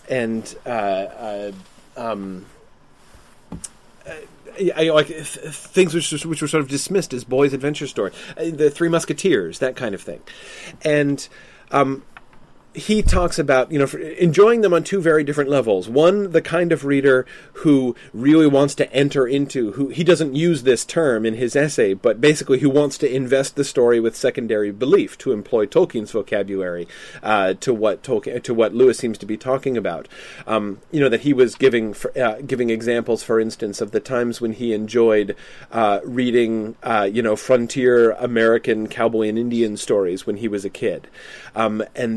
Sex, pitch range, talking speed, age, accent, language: male, 115-145 Hz, 180 wpm, 30-49, American, English